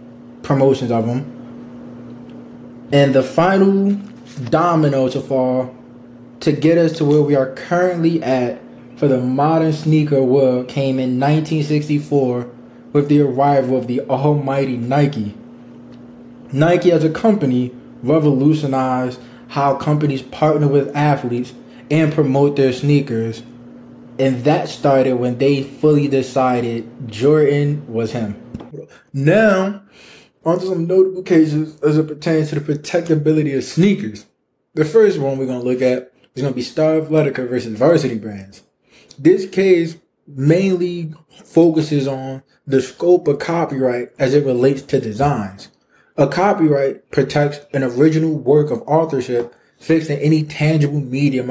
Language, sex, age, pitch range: English, male, 20-39, 125-155 Hz